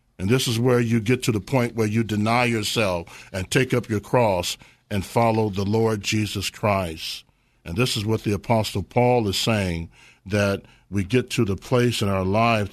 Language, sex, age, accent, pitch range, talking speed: English, male, 50-69, American, 105-130 Hz, 200 wpm